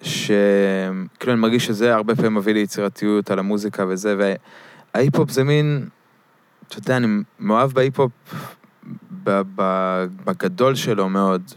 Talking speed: 120 wpm